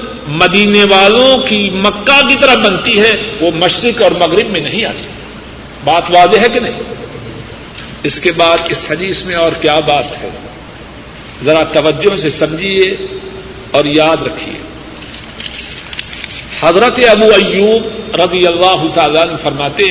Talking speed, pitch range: 135 wpm, 170-250 Hz